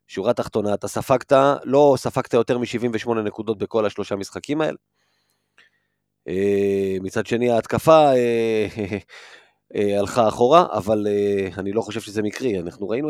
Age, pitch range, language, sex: 30-49, 105-130 Hz, Hebrew, male